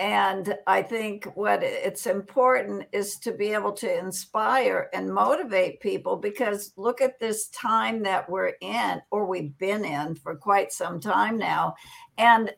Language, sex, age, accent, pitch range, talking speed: English, female, 60-79, American, 180-245 Hz, 160 wpm